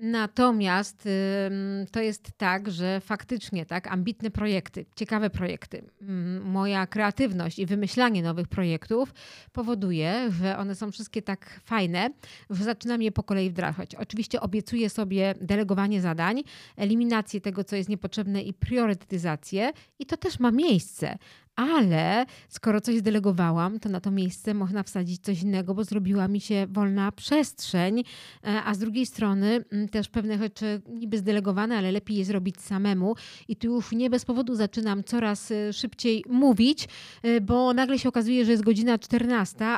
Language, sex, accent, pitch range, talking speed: Polish, female, native, 195-235 Hz, 145 wpm